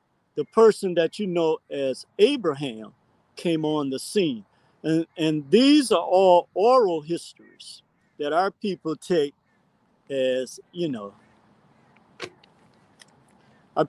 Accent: American